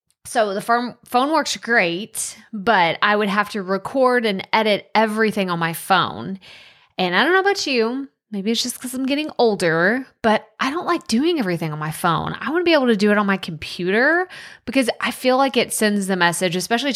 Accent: American